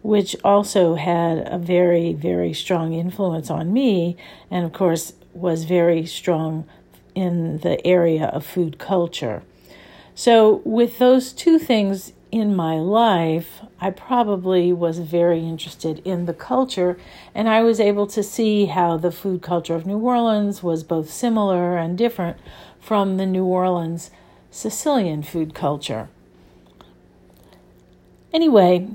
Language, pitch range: English, 170-210 Hz